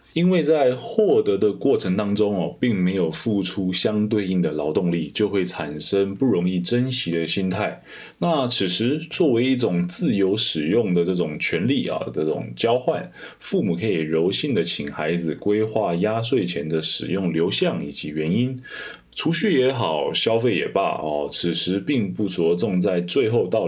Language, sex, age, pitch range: Chinese, male, 20-39, 85-120 Hz